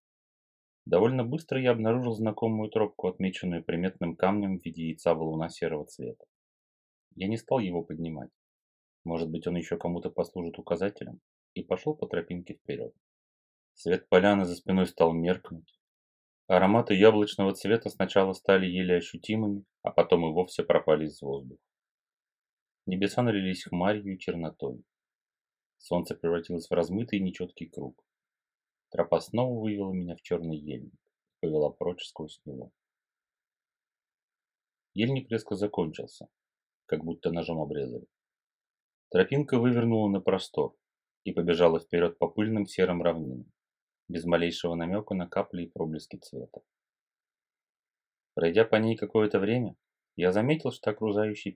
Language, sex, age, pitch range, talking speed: Russian, male, 30-49, 85-105 Hz, 130 wpm